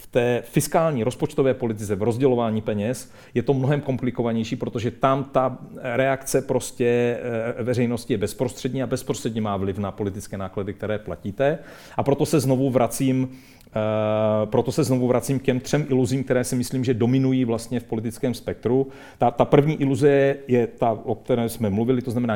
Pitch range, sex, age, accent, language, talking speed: 110-135 Hz, male, 40-59, native, Czech, 170 wpm